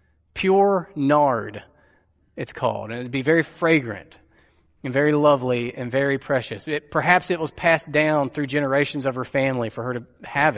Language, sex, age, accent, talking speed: English, male, 30-49, American, 170 wpm